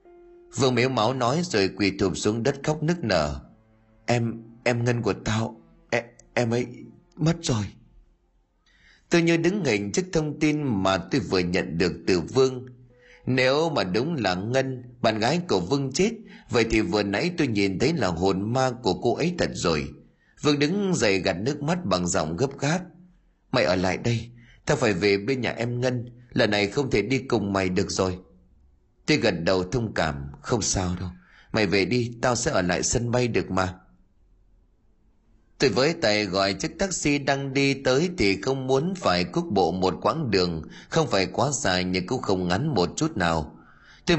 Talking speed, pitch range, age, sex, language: 190 wpm, 95-140 Hz, 30-49, male, Vietnamese